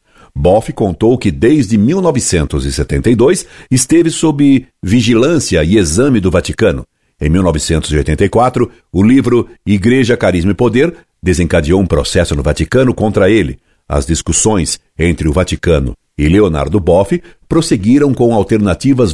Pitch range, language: 85-120 Hz, Portuguese